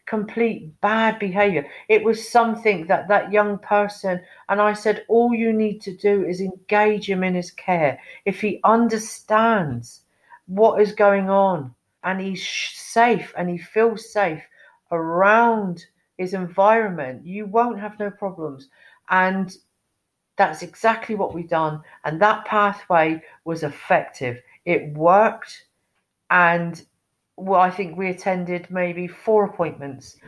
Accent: British